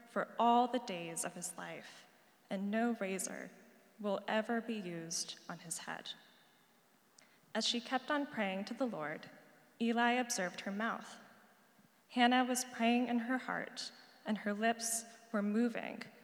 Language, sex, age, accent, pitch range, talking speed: English, female, 10-29, American, 200-245 Hz, 150 wpm